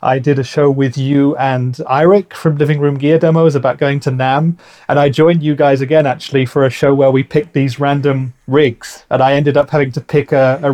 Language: English